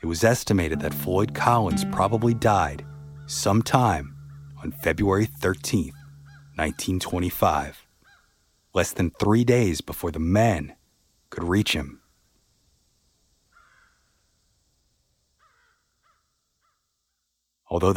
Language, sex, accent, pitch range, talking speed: English, male, American, 80-115 Hz, 80 wpm